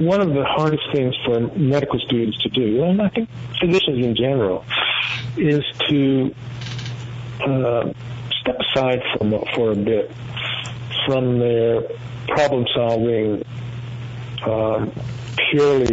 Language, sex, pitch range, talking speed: English, male, 120-130 Hz, 105 wpm